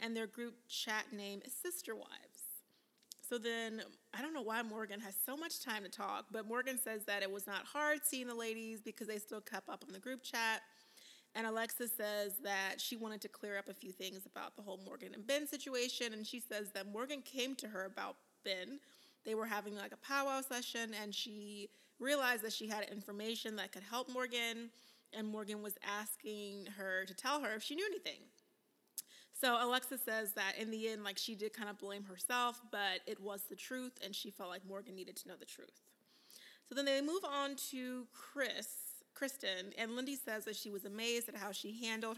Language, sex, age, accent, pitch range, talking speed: English, female, 20-39, American, 210-255 Hz, 210 wpm